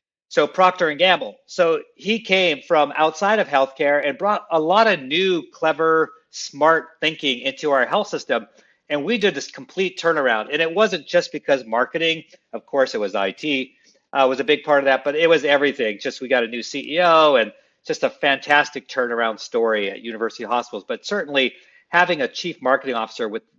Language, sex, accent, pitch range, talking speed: English, male, American, 130-180 Hz, 190 wpm